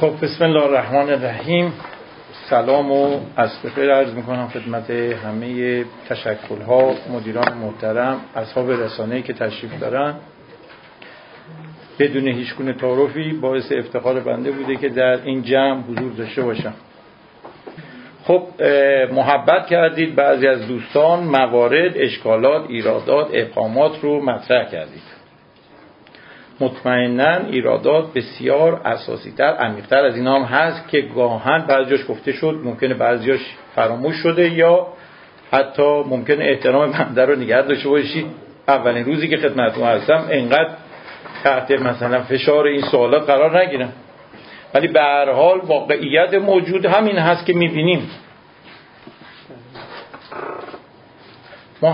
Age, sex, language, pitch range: 50-69, male, Persian, 125-155 Hz